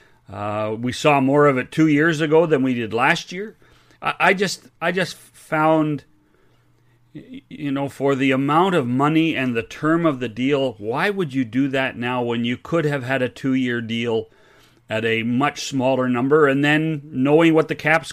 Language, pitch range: English, 125-155 Hz